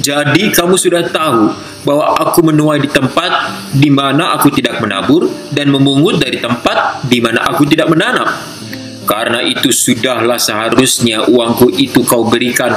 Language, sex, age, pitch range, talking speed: Indonesian, male, 20-39, 120-150 Hz, 145 wpm